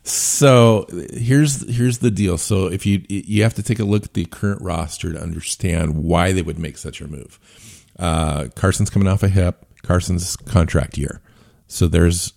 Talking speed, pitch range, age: 185 wpm, 80-95 Hz, 50-69